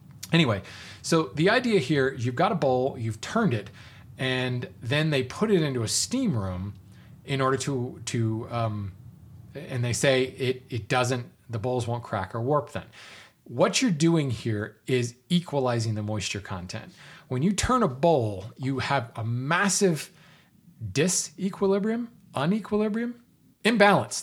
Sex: male